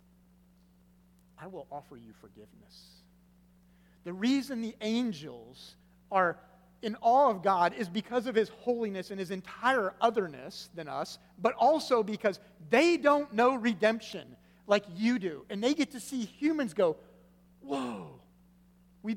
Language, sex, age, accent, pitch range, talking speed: English, male, 40-59, American, 150-200 Hz, 140 wpm